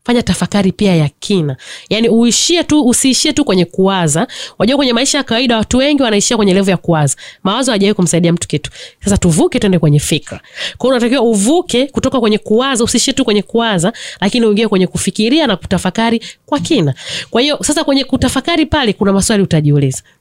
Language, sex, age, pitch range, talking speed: English, female, 30-49, 180-245 Hz, 175 wpm